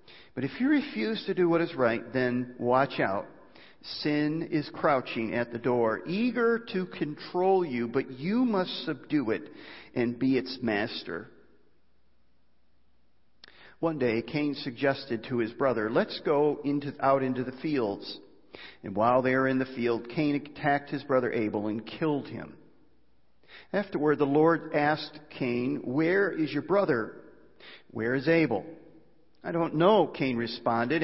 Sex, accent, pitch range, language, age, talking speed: male, American, 120-160 Hz, English, 50-69, 145 wpm